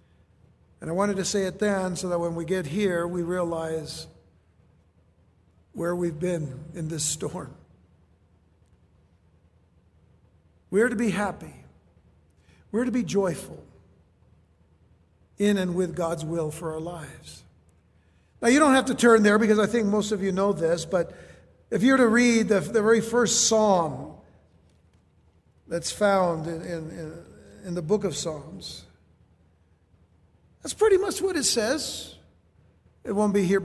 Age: 60-79